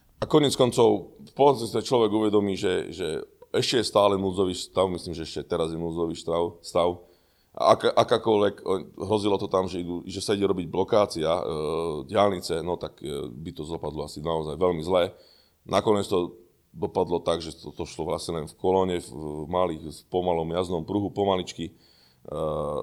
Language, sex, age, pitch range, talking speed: Slovak, male, 30-49, 85-100 Hz, 170 wpm